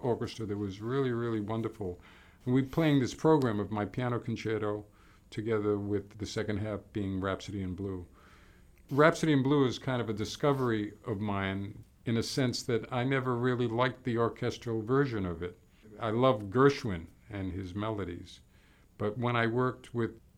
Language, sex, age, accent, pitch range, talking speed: English, male, 50-69, American, 100-125 Hz, 170 wpm